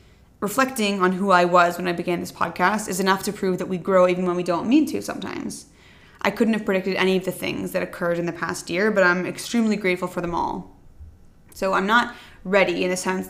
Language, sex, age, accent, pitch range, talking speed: English, female, 20-39, American, 180-220 Hz, 235 wpm